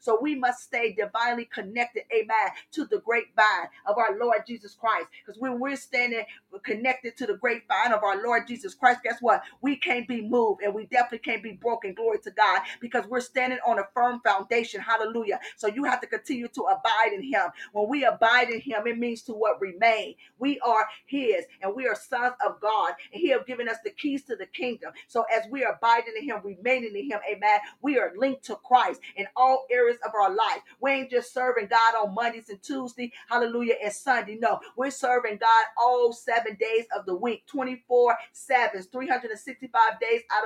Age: 40-59